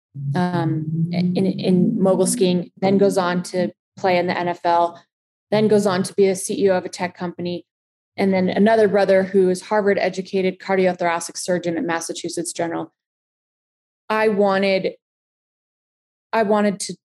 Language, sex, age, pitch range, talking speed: English, female, 20-39, 175-200 Hz, 150 wpm